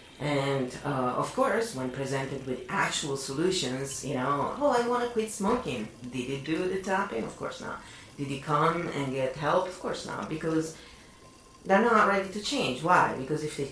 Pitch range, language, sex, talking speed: 130-165 Hz, English, female, 195 wpm